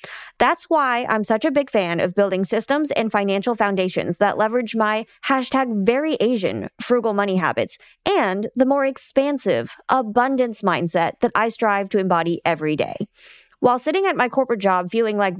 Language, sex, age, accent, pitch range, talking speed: English, female, 20-39, American, 195-270 Hz, 170 wpm